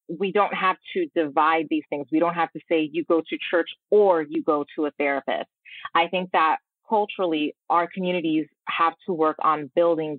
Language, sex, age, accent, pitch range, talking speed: English, female, 20-39, American, 155-185 Hz, 195 wpm